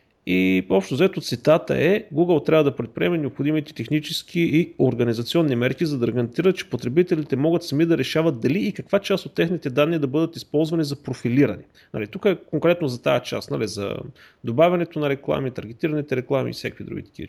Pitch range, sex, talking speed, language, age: 125-165 Hz, male, 185 wpm, Bulgarian, 30-49